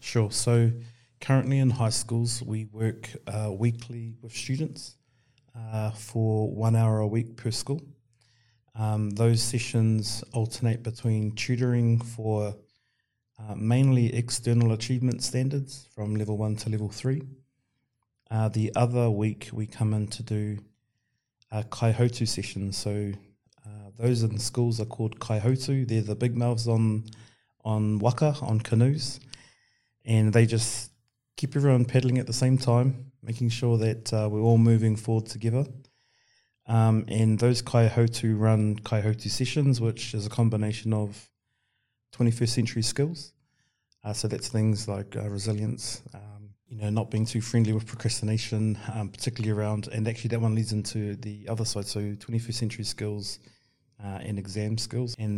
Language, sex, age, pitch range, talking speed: English, male, 30-49, 110-120 Hz, 150 wpm